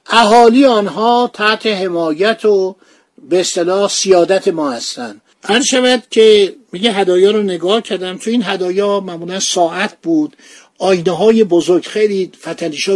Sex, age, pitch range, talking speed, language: male, 50-69, 180-225 Hz, 135 wpm, Persian